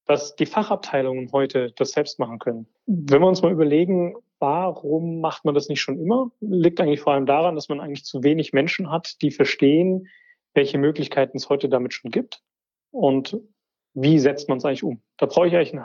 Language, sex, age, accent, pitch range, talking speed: German, male, 30-49, German, 135-175 Hz, 200 wpm